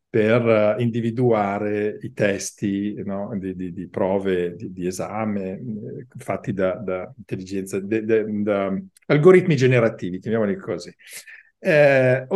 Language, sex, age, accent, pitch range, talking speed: Italian, male, 50-69, native, 100-130 Hz, 115 wpm